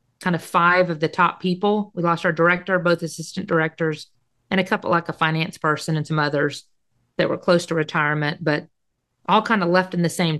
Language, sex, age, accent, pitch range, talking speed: English, female, 40-59, American, 145-190 Hz, 215 wpm